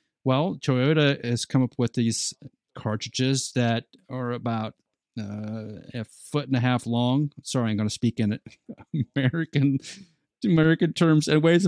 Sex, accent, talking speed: male, American, 155 wpm